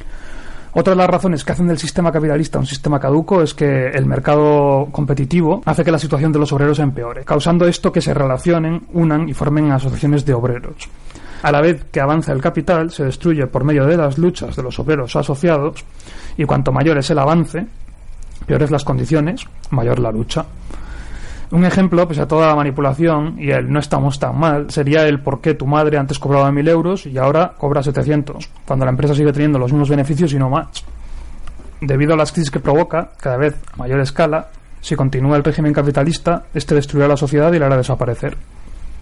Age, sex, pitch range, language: 30-49, male, 135-160 Hz, Spanish